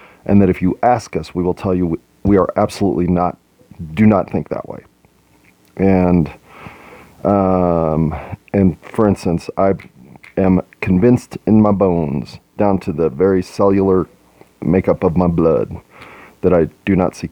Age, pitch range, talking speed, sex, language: 30-49, 85-100 Hz, 155 wpm, male, English